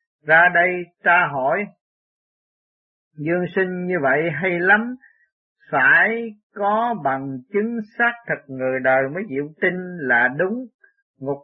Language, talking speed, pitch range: Vietnamese, 125 wpm, 140-205 Hz